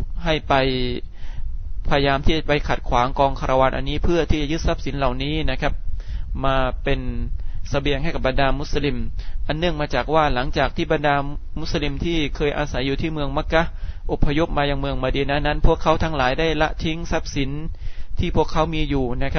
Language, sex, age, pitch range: Thai, male, 20-39, 125-150 Hz